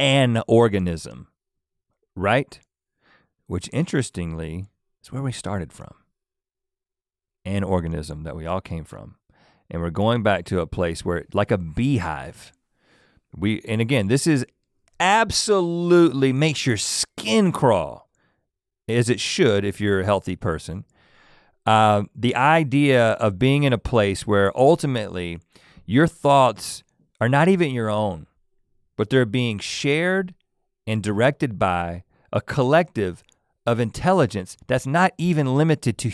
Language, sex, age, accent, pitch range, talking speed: English, male, 40-59, American, 95-145 Hz, 130 wpm